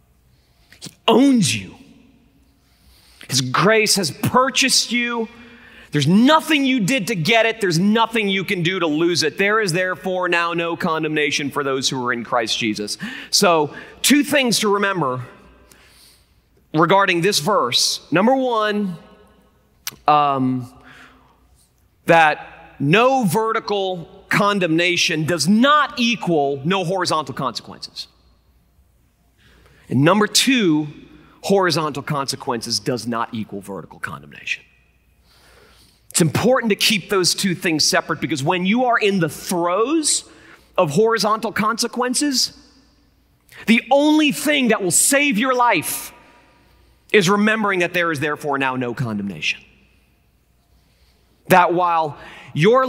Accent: American